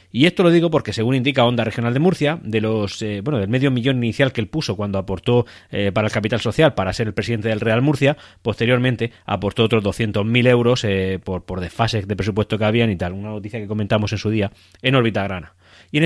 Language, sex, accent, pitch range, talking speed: Spanish, male, Spanish, 105-130 Hz, 235 wpm